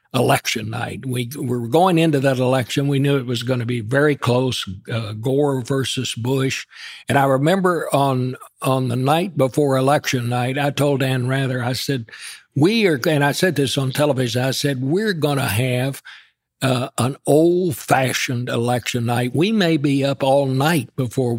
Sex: male